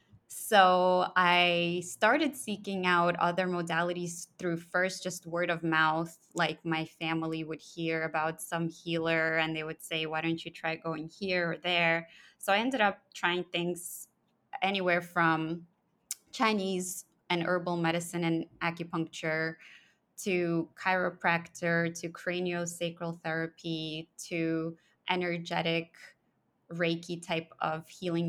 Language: English